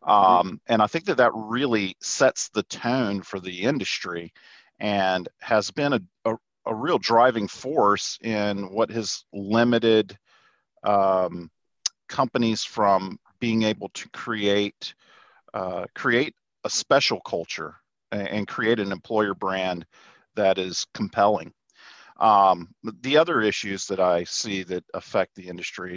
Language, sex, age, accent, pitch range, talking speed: English, male, 40-59, American, 95-110 Hz, 135 wpm